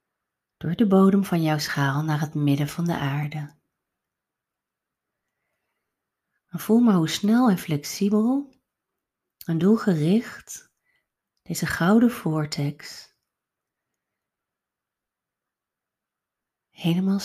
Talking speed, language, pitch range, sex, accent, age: 85 wpm, Dutch, 145-190 Hz, female, Dutch, 40-59